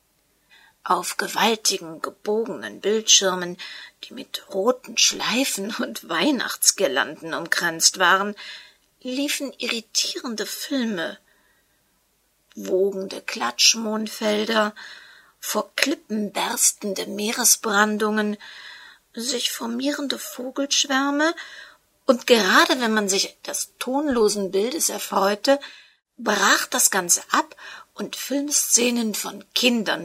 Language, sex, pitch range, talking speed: German, female, 205-275 Hz, 80 wpm